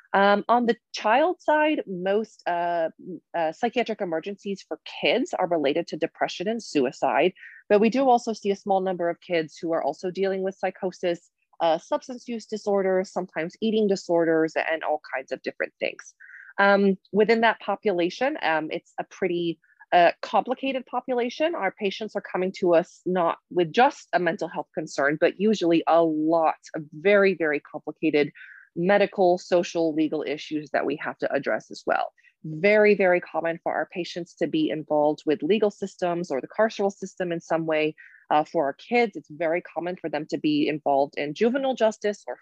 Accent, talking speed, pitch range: American, 175 wpm, 160-210 Hz